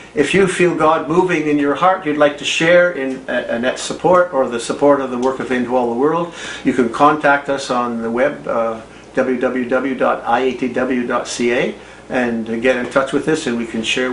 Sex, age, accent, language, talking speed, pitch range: male, 50-69, American, English, 195 wpm, 125-150 Hz